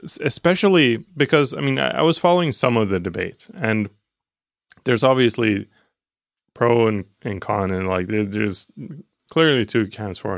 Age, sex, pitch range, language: 20-39, male, 95-135 Hz, English